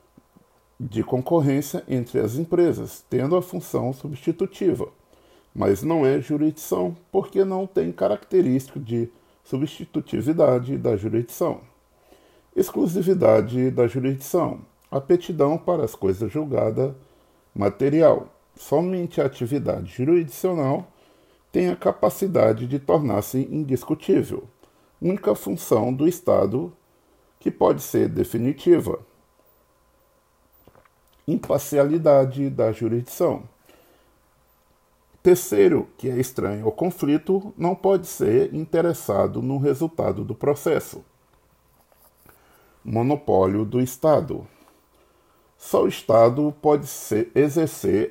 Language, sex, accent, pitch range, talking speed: Portuguese, male, Brazilian, 125-175 Hz, 90 wpm